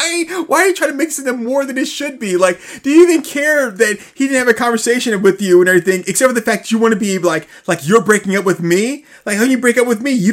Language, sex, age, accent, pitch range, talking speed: English, male, 30-49, American, 165-230 Hz, 300 wpm